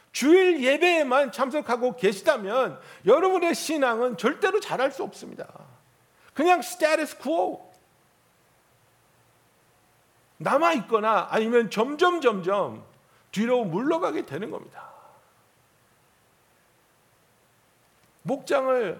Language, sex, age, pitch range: Korean, male, 60-79, 240-315 Hz